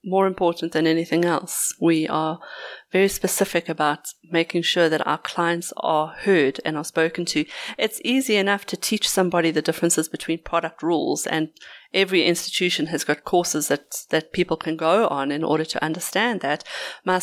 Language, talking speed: English, 175 wpm